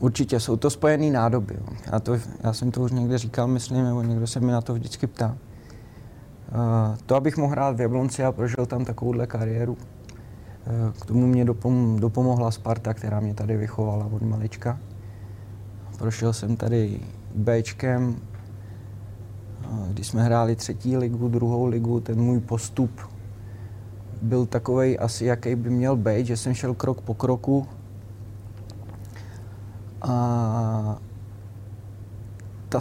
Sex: male